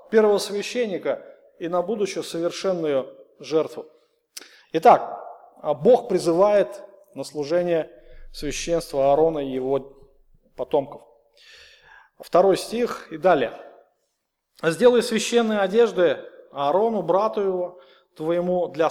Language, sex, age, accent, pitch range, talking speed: Russian, male, 30-49, native, 165-220 Hz, 90 wpm